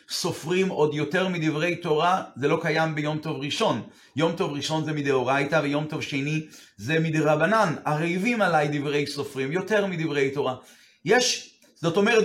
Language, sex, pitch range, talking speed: Hebrew, male, 150-190 Hz, 155 wpm